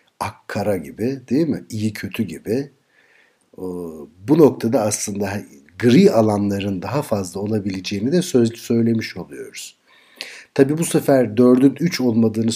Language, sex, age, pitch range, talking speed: Turkish, male, 60-79, 100-125 Hz, 120 wpm